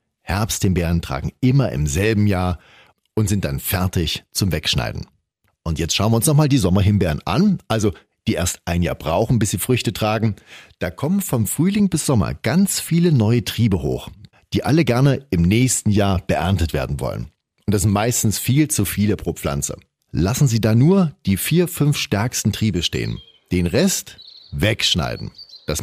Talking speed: 170 wpm